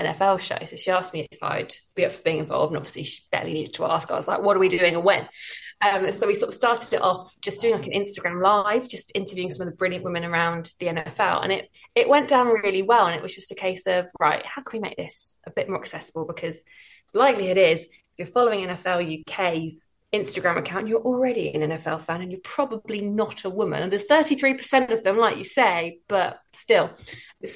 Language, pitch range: English, 175-220 Hz